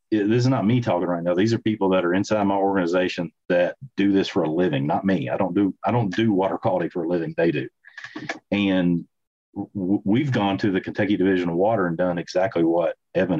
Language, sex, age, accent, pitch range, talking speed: English, male, 40-59, American, 90-115 Hz, 230 wpm